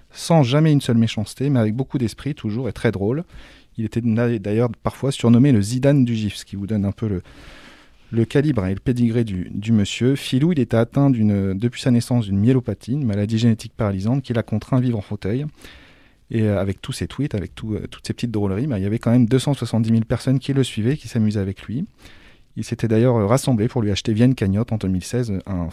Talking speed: 225 wpm